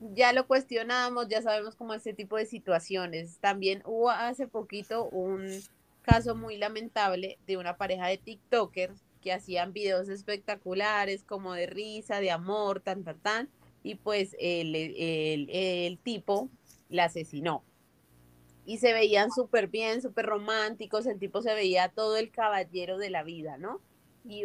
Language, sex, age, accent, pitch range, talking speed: Spanish, female, 30-49, Colombian, 185-220 Hz, 155 wpm